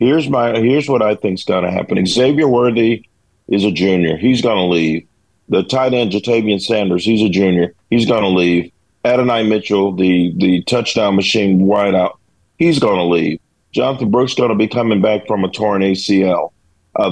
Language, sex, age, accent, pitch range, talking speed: English, male, 40-59, American, 95-120 Hz, 185 wpm